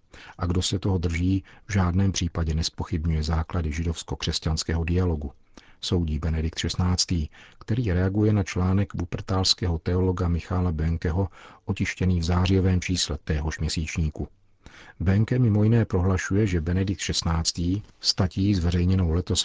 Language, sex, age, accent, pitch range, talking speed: Czech, male, 50-69, native, 85-100 Hz, 120 wpm